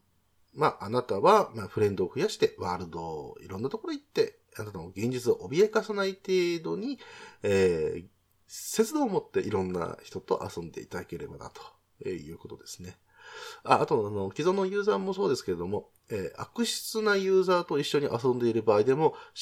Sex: male